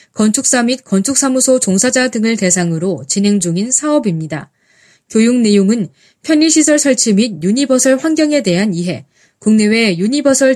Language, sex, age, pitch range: Korean, female, 20-39, 190-285 Hz